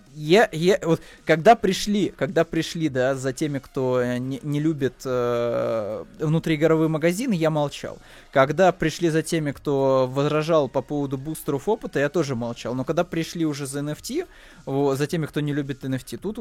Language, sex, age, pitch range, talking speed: Russian, male, 20-39, 130-165 Hz, 170 wpm